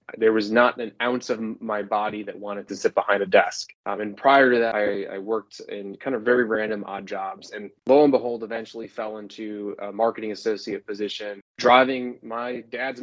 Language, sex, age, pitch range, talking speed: English, male, 20-39, 105-125 Hz, 205 wpm